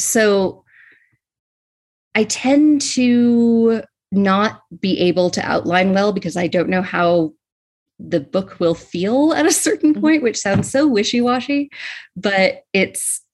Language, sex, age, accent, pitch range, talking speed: English, female, 30-49, American, 160-200 Hz, 130 wpm